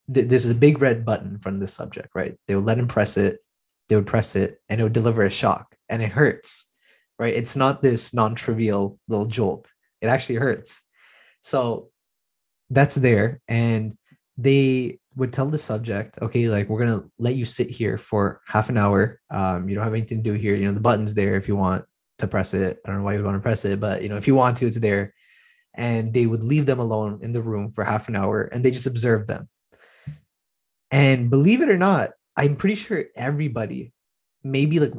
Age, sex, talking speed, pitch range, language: 20-39, male, 220 wpm, 105-135 Hz, English